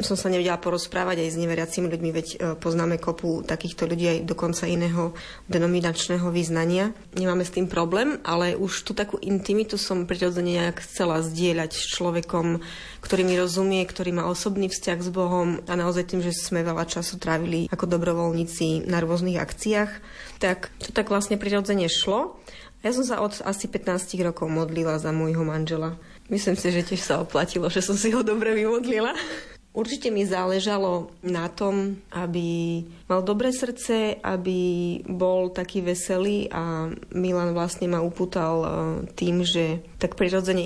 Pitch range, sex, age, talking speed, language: 170-190 Hz, female, 30-49, 160 wpm, Slovak